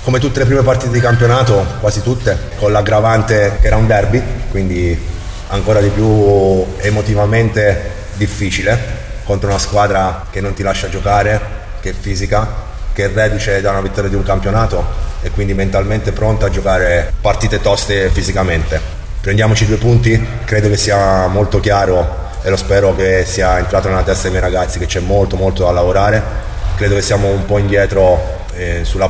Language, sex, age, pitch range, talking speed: Italian, male, 30-49, 95-105 Hz, 170 wpm